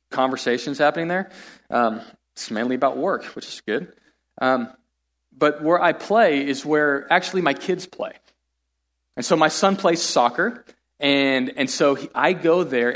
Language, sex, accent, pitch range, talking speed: English, male, American, 125-175 Hz, 160 wpm